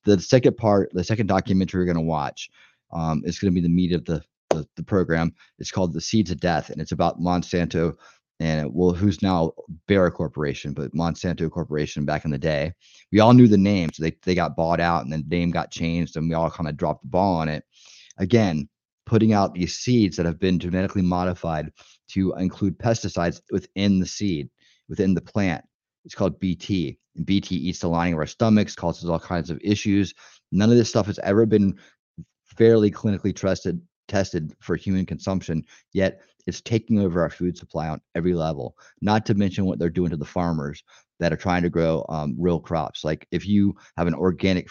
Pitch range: 85-95 Hz